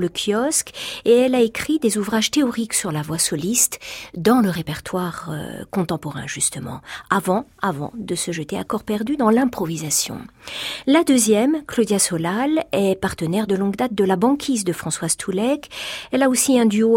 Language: French